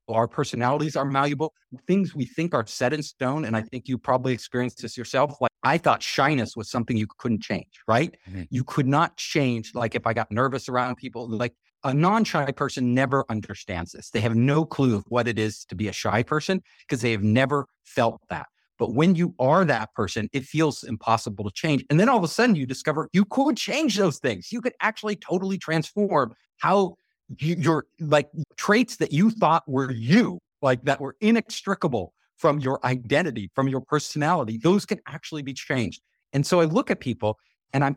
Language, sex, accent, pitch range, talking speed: English, male, American, 120-165 Hz, 200 wpm